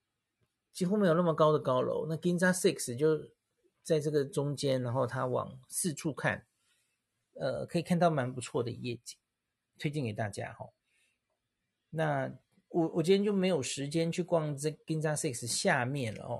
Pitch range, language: 125-165 Hz, Chinese